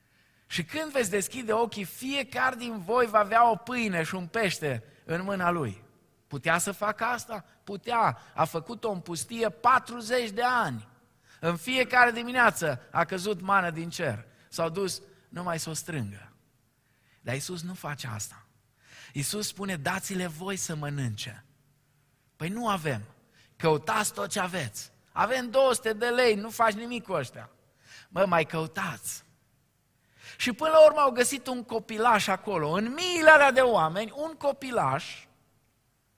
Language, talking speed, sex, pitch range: Romanian, 150 wpm, male, 125-210 Hz